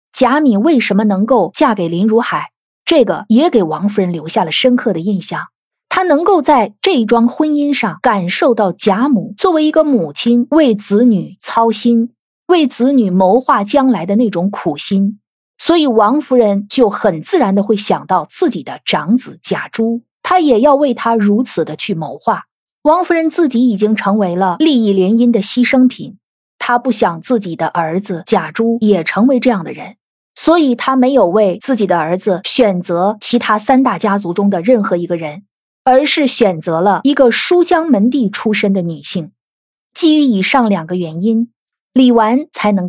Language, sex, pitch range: Chinese, female, 195-265 Hz